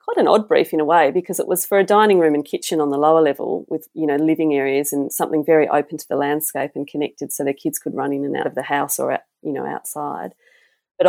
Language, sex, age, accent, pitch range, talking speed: English, female, 30-49, Australian, 145-165 Hz, 265 wpm